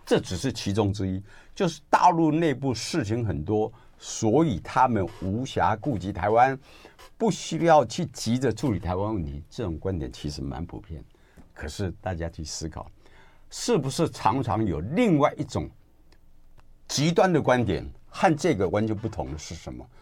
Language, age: Chinese, 60-79